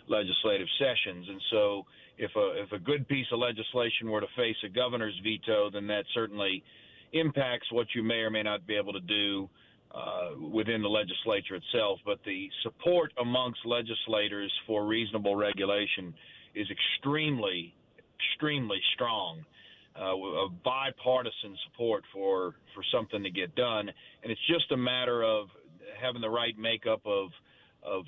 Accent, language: American, English